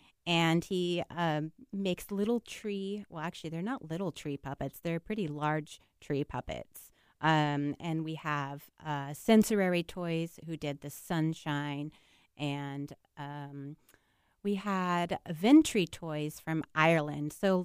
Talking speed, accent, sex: 130 wpm, American, female